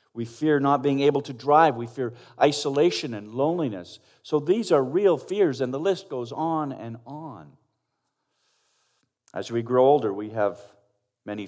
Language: English